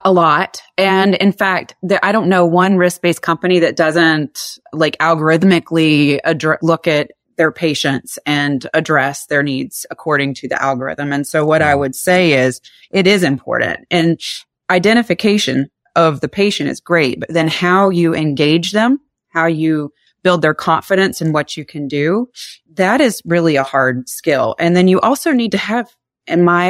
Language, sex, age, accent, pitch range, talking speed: English, female, 30-49, American, 150-180 Hz, 170 wpm